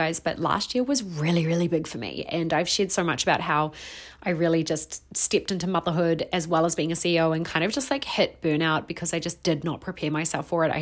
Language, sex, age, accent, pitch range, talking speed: English, female, 30-49, Australian, 165-210 Hz, 255 wpm